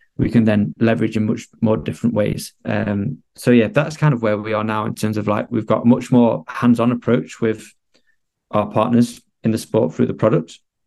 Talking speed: 210 wpm